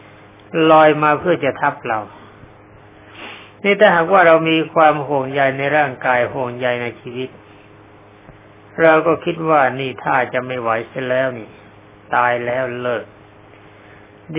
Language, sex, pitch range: Thai, male, 105-150 Hz